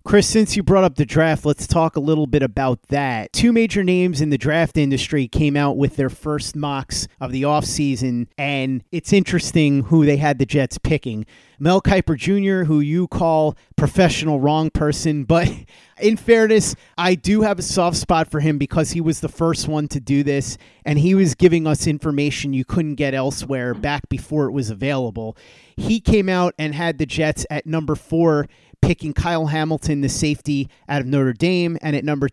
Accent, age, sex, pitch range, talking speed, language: American, 30-49, male, 135-165 Hz, 195 wpm, English